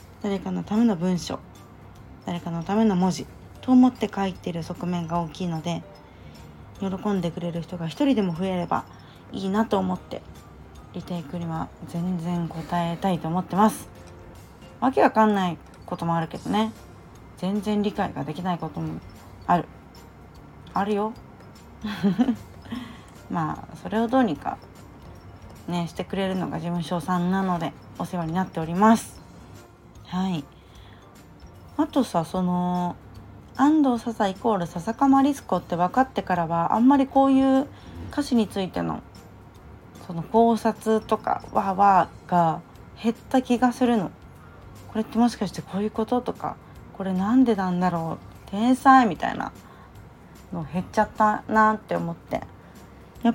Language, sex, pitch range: Japanese, female, 160-220 Hz